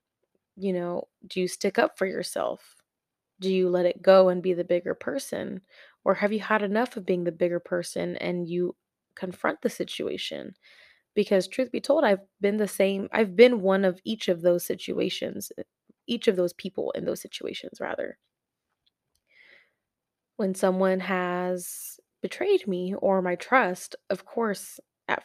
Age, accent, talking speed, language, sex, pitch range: 20-39, American, 160 wpm, English, female, 180-210 Hz